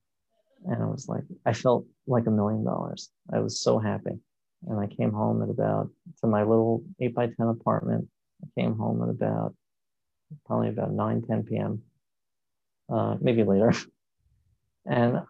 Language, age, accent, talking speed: English, 30-49, American, 160 wpm